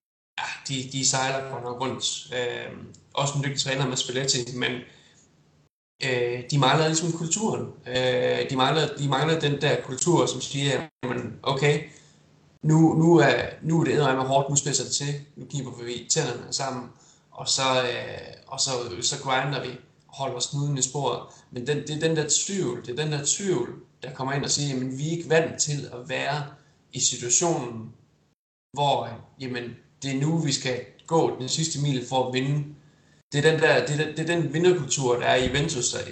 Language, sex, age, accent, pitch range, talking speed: Danish, male, 20-39, native, 125-150 Hz, 195 wpm